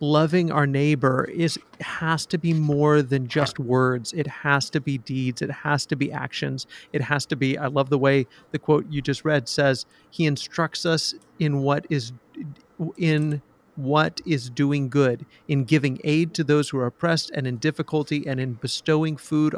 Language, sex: English, male